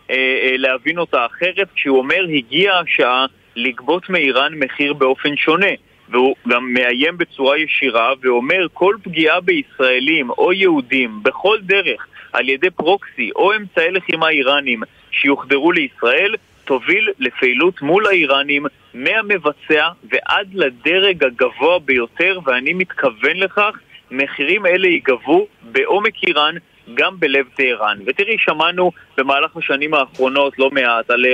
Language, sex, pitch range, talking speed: Hebrew, male, 135-195 Hz, 120 wpm